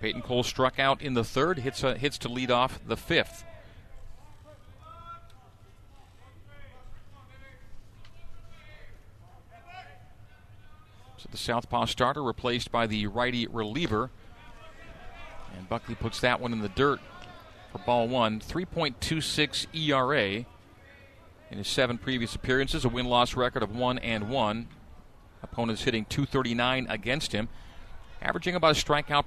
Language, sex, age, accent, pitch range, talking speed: English, male, 40-59, American, 105-130 Hz, 120 wpm